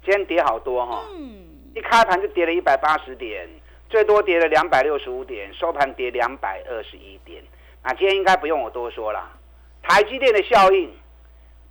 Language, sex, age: Chinese, male, 50-69